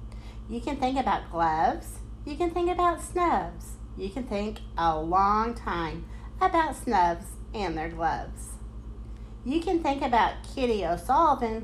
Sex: female